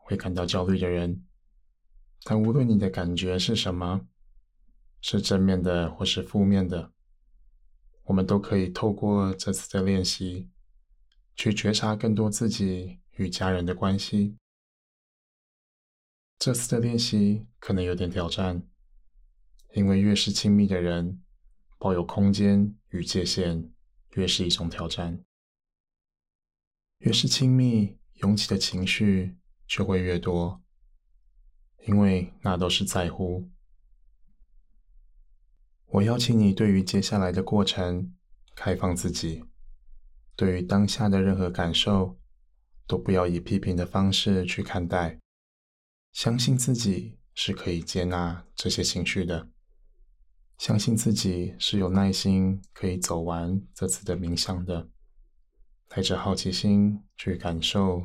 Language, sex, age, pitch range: Chinese, male, 20-39, 85-100 Hz